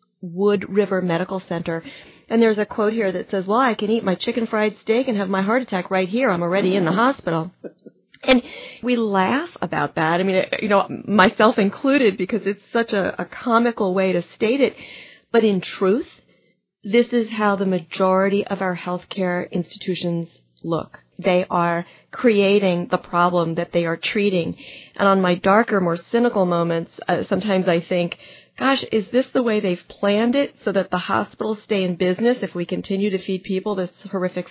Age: 40-59